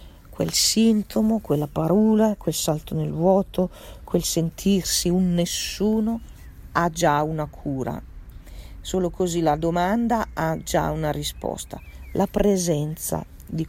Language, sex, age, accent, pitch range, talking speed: Italian, female, 40-59, native, 145-180 Hz, 120 wpm